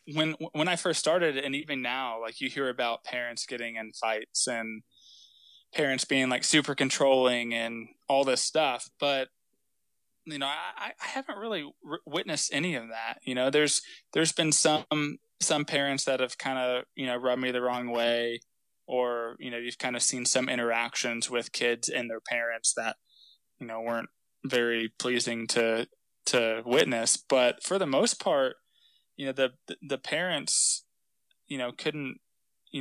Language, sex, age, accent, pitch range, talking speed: English, male, 20-39, American, 115-135 Hz, 170 wpm